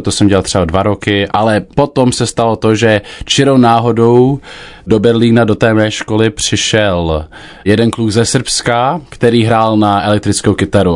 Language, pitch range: Czech, 95-110 Hz